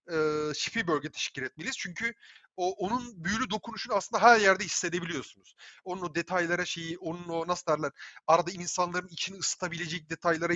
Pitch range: 160-235 Hz